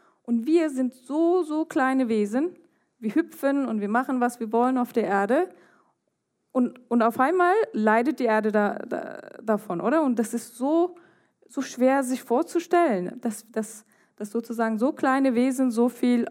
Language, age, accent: German, 20-39, German